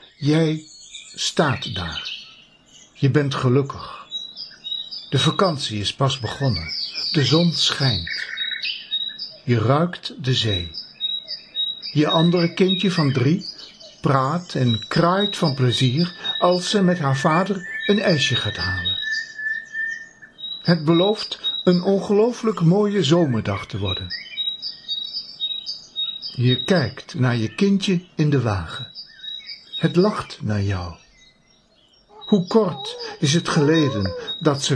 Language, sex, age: Dutch, male, 60-79